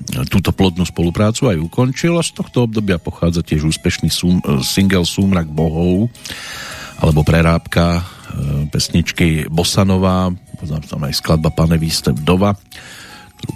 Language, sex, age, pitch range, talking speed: Slovak, male, 50-69, 85-105 Hz, 130 wpm